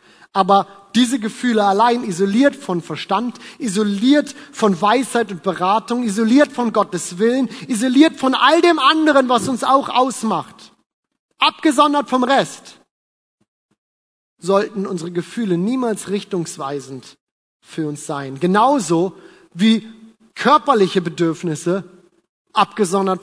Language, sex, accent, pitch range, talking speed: German, male, German, 170-225 Hz, 105 wpm